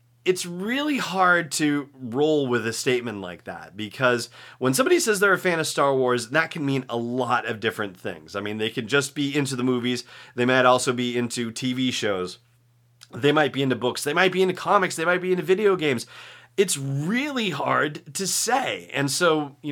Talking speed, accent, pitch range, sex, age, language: 205 wpm, American, 120-165 Hz, male, 30-49, English